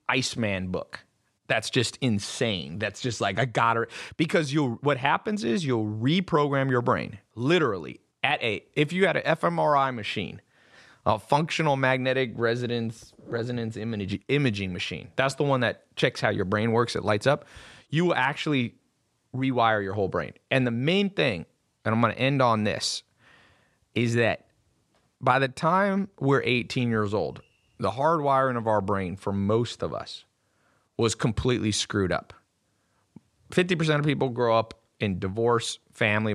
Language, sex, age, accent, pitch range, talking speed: English, male, 30-49, American, 110-145 Hz, 160 wpm